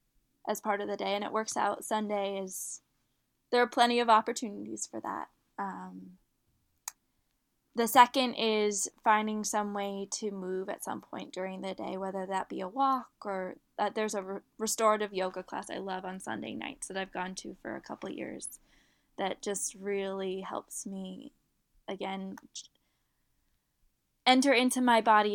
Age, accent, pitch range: 10-29, American, 195-230 Hz